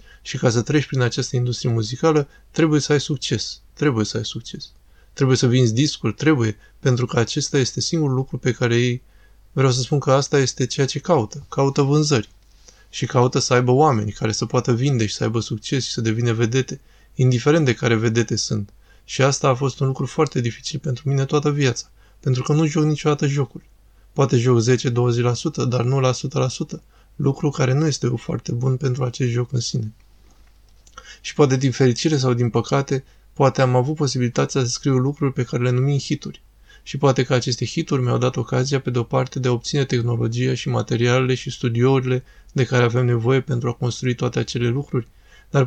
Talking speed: 195 wpm